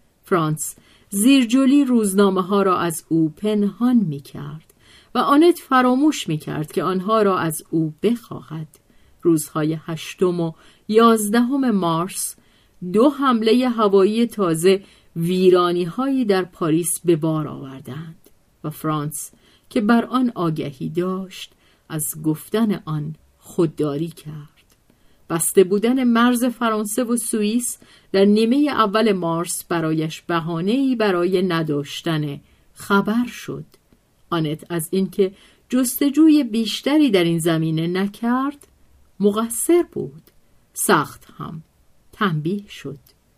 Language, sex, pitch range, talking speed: Persian, female, 160-225 Hz, 110 wpm